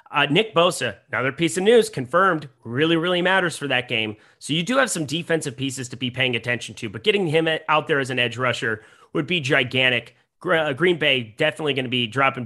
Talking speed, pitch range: 215 wpm, 120-155 Hz